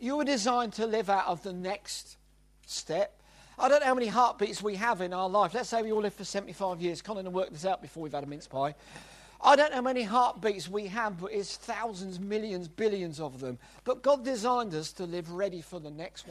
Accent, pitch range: British, 185-245 Hz